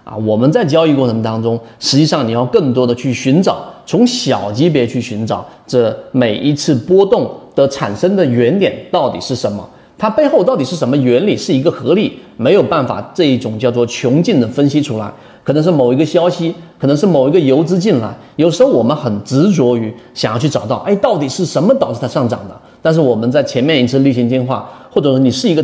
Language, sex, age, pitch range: Chinese, male, 30-49, 120-155 Hz